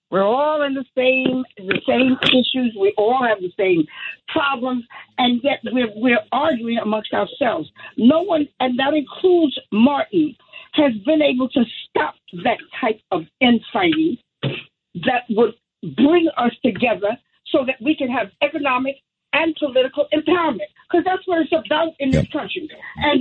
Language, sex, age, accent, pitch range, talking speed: English, female, 50-69, American, 240-305 Hz, 155 wpm